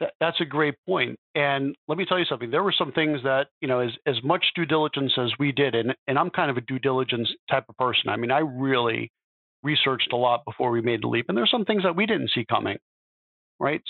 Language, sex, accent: English, male, American